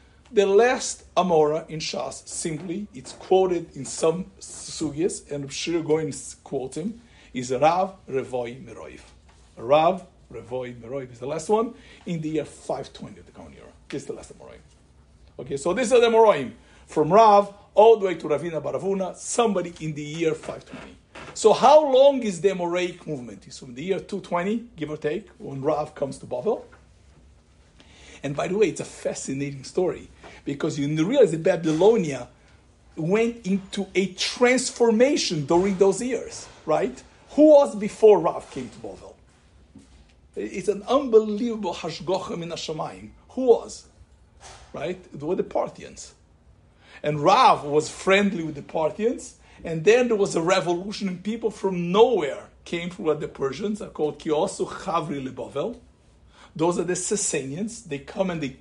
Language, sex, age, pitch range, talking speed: English, male, 50-69, 150-210 Hz, 160 wpm